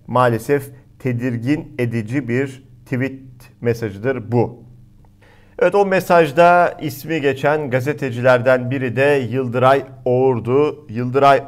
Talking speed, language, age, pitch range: 95 wpm, Turkish, 50-69, 115-150 Hz